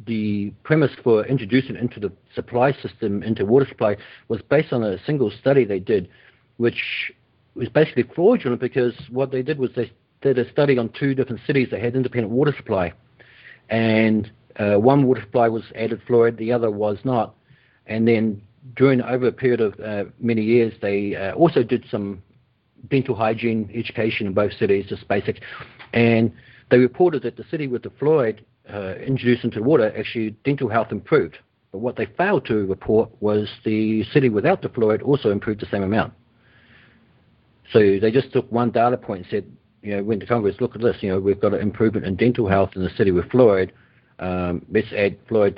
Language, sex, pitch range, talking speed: English, male, 100-125 Hz, 190 wpm